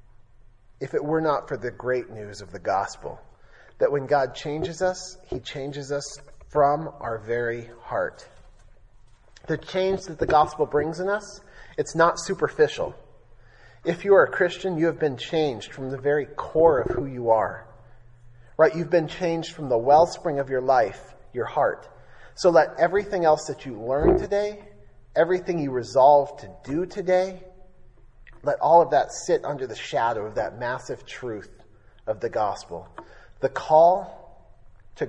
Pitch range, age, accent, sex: 115-160 Hz, 30-49, American, male